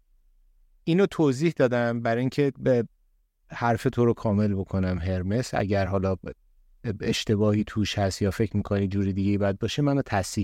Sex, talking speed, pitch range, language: male, 155 wpm, 100-125 Hz, Persian